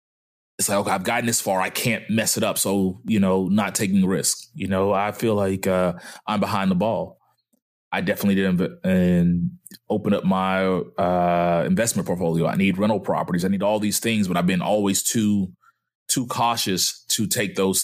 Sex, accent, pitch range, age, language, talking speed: male, American, 95-115 Hz, 20-39, English, 190 wpm